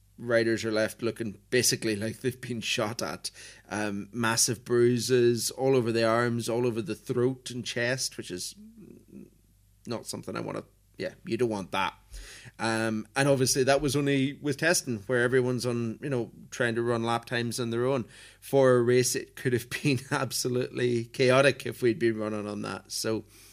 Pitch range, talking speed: 120-140 Hz, 185 wpm